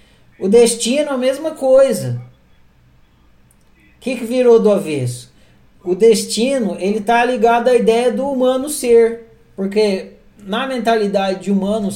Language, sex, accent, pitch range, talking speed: Portuguese, male, Brazilian, 190-240 Hz, 130 wpm